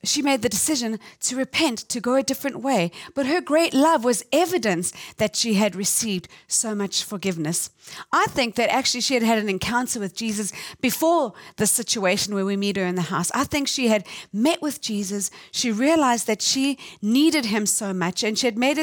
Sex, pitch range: female, 205-275 Hz